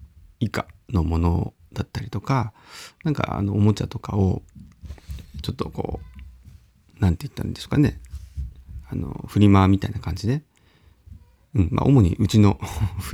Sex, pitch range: male, 80-105 Hz